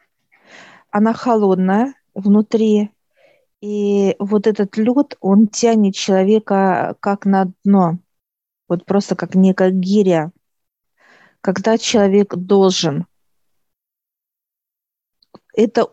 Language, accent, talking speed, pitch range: Russian, native, 85 wpm, 190-220 Hz